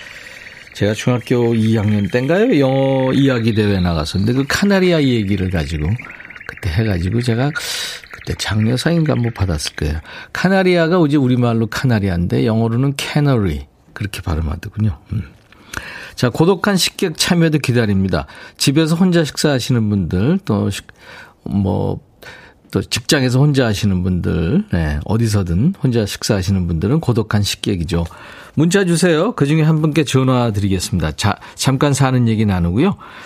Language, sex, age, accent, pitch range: Korean, male, 40-59, native, 100-155 Hz